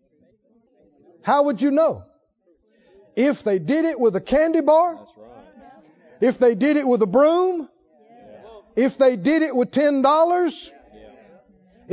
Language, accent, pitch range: English, American, 195-275 Hz